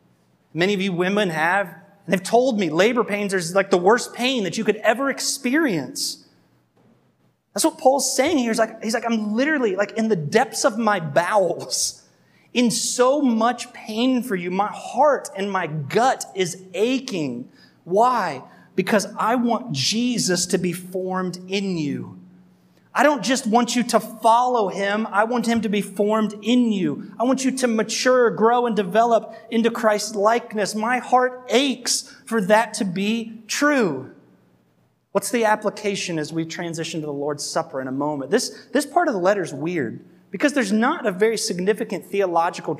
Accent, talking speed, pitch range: American, 175 wpm, 180-235 Hz